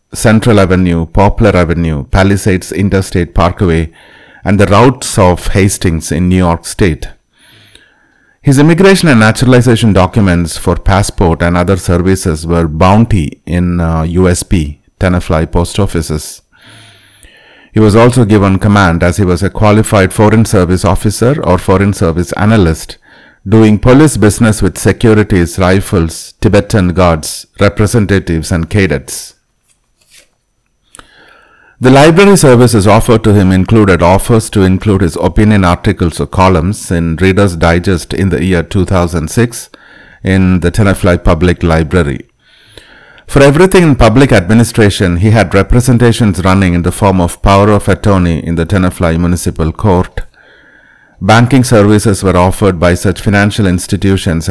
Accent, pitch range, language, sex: Indian, 90-105 Hz, English, male